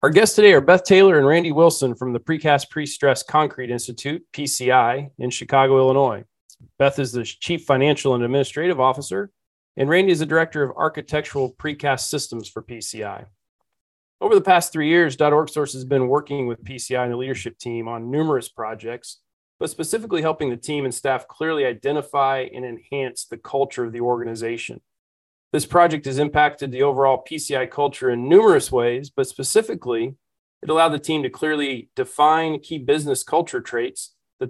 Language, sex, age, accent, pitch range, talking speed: English, male, 40-59, American, 130-160 Hz, 170 wpm